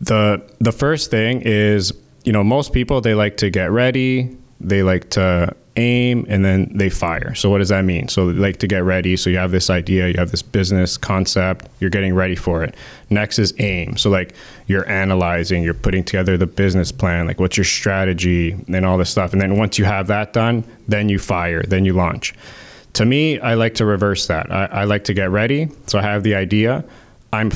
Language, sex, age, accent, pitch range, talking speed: English, male, 20-39, American, 95-110 Hz, 220 wpm